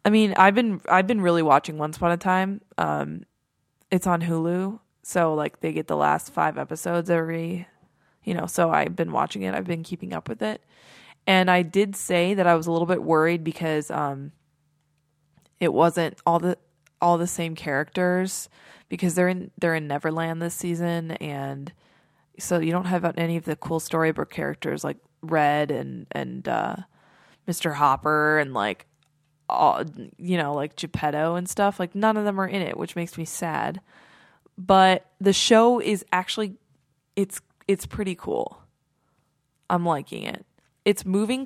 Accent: American